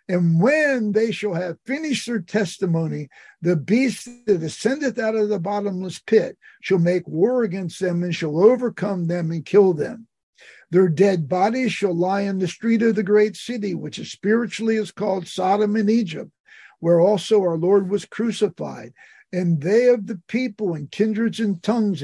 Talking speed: 175 wpm